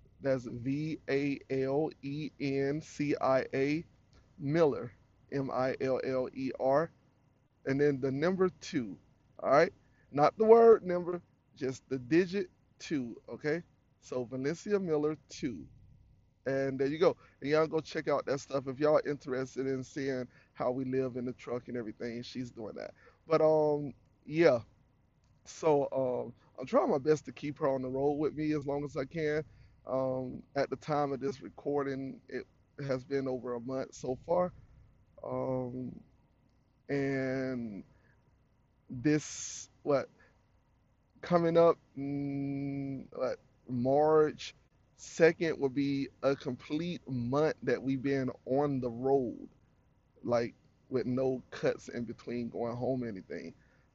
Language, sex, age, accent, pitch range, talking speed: English, male, 30-49, American, 125-145 Hz, 135 wpm